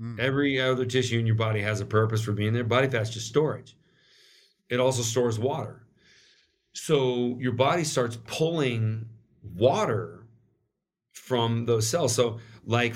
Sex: male